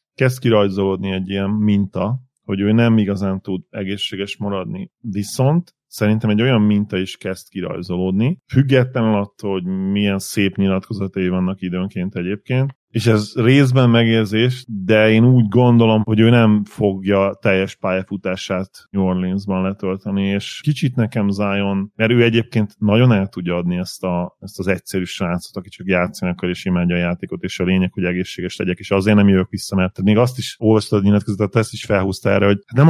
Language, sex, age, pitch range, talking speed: Hungarian, male, 30-49, 95-110 Hz, 170 wpm